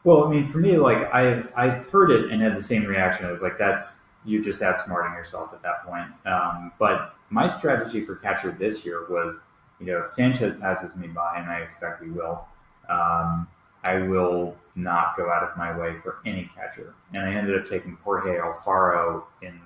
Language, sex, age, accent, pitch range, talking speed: English, male, 30-49, American, 85-105 Hz, 205 wpm